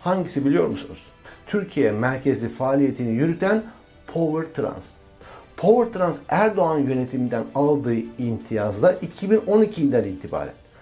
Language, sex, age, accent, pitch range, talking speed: Turkish, male, 60-79, native, 125-185 Hz, 95 wpm